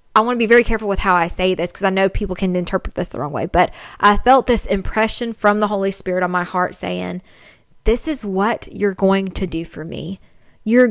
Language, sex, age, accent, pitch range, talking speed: English, female, 20-39, American, 185-225 Hz, 240 wpm